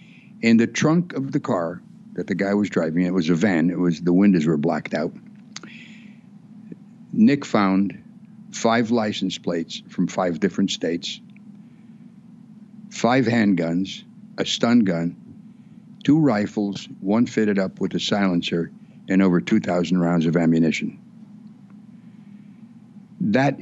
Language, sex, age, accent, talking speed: English, male, 60-79, American, 130 wpm